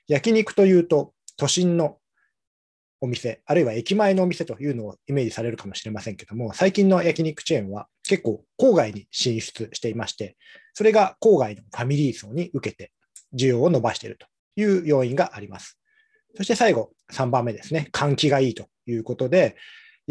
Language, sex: Japanese, male